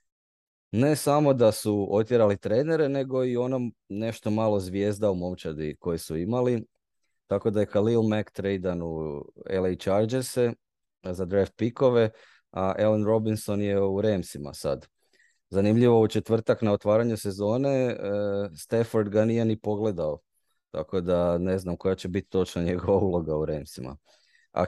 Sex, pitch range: male, 95-115 Hz